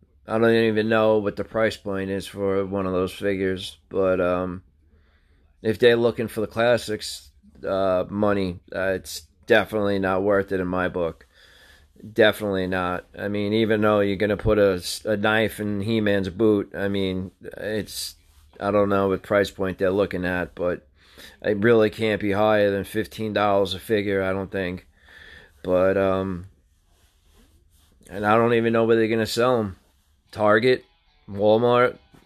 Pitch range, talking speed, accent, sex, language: 90-110 Hz, 165 wpm, American, male, English